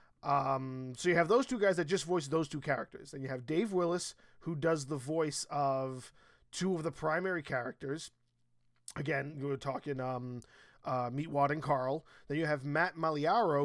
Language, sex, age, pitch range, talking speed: English, male, 20-39, 145-185 Hz, 185 wpm